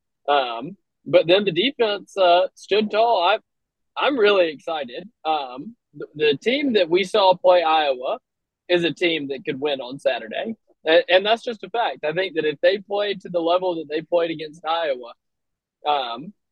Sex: male